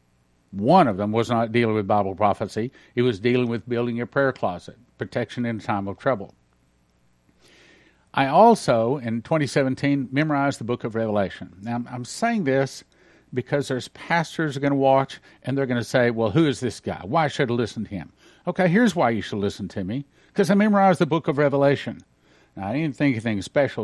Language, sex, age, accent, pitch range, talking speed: English, male, 50-69, American, 105-145 Hz, 200 wpm